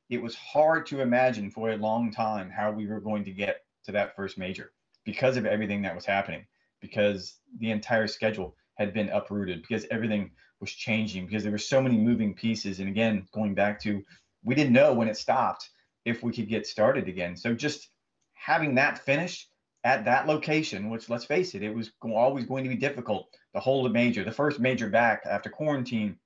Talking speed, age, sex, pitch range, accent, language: 205 wpm, 30-49, male, 105-130 Hz, American, English